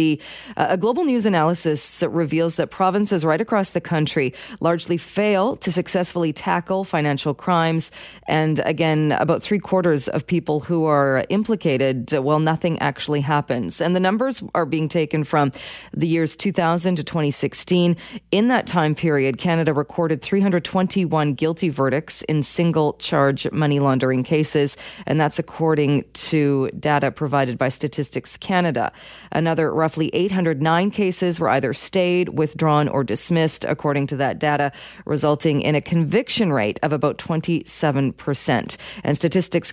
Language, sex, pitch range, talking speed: English, female, 145-175 Hz, 140 wpm